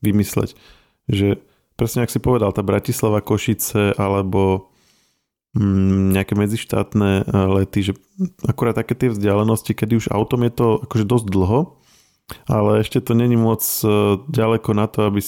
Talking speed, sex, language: 140 wpm, male, Slovak